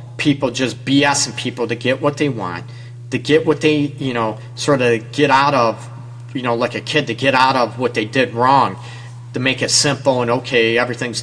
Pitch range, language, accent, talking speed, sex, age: 120-145 Hz, English, American, 215 wpm, male, 40-59